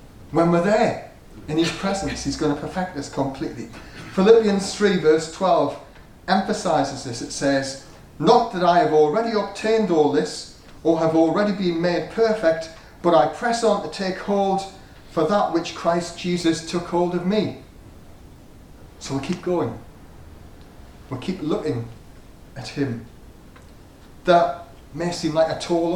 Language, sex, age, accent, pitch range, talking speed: English, male, 30-49, British, 130-180 Hz, 150 wpm